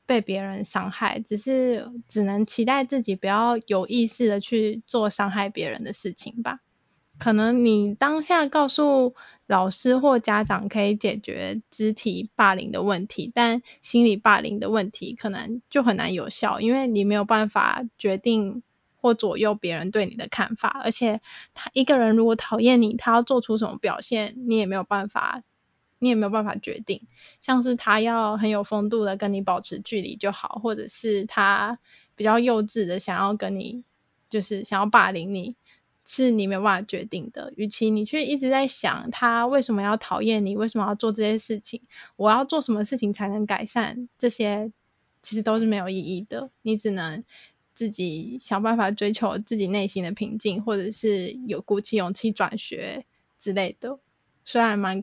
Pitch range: 205-235 Hz